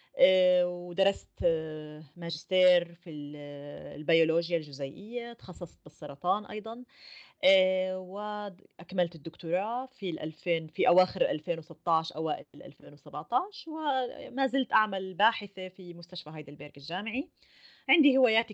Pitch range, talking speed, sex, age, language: 165-215 Hz, 85 wpm, female, 30-49, Arabic